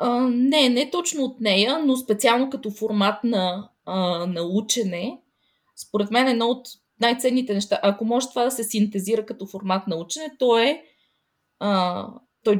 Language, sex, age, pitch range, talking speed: Bulgarian, female, 20-39, 190-240 Hz, 165 wpm